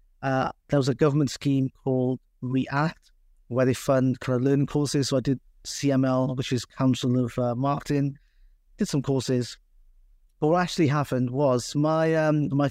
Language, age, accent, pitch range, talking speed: English, 30-49, British, 125-150 Hz, 165 wpm